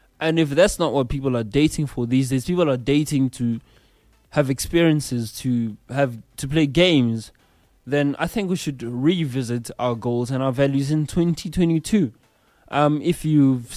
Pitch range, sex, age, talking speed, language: 120-150 Hz, male, 20-39, 165 wpm, English